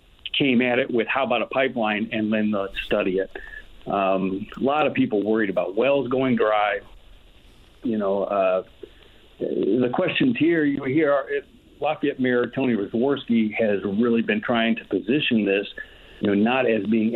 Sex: male